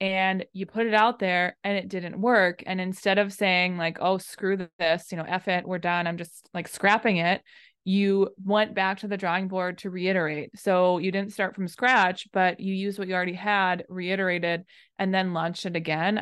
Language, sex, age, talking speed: English, female, 20-39, 210 wpm